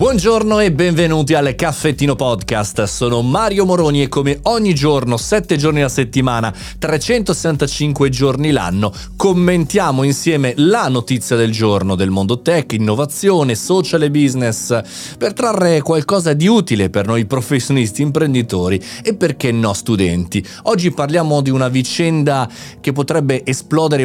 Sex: male